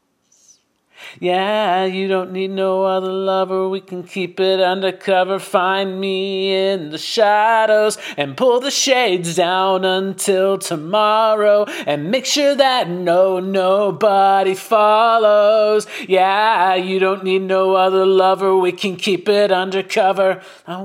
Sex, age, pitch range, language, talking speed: male, 40-59, 190-220 Hz, English, 125 wpm